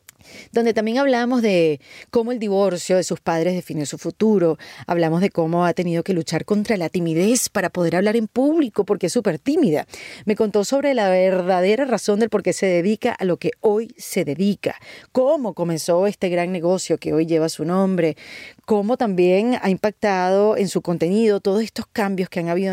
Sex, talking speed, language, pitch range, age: female, 190 wpm, Spanish, 180-225 Hz, 30-49